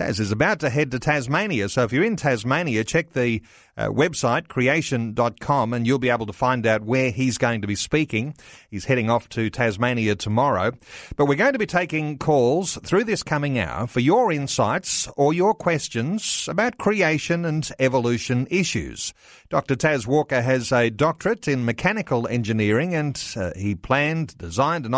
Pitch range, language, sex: 115-150 Hz, English, male